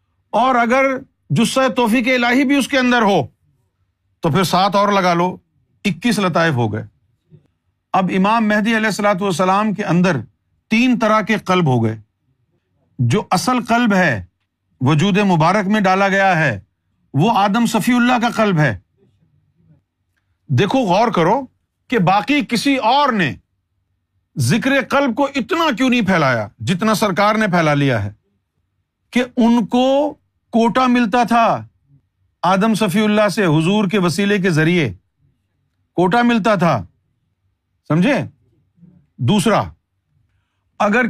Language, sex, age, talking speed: Urdu, male, 50-69, 135 wpm